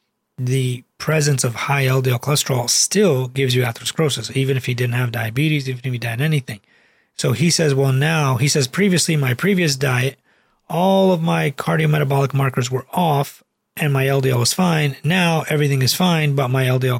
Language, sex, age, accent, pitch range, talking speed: English, male, 30-49, American, 120-145 Hz, 180 wpm